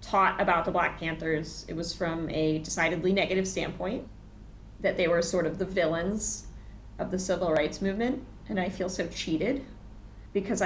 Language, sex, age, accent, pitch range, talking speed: English, female, 20-39, American, 160-190 Hz, 170 wpm